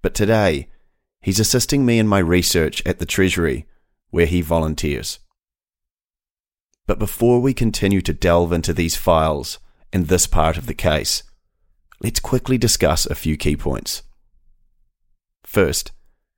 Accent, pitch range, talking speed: Australian, 85-100 Hz, 135 wpm